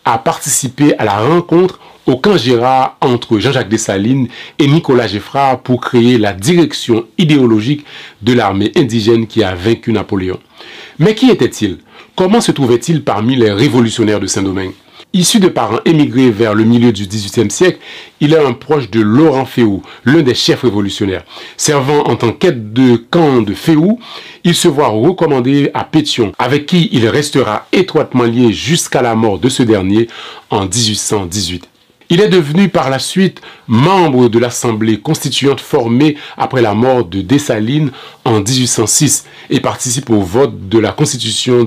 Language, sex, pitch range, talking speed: French, male, 110-145 Hz, 160 wpm